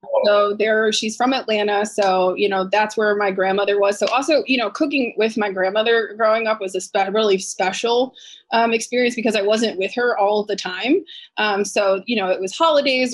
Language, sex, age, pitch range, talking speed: English, female, 20-39, 195-220 Hz, 200 wpm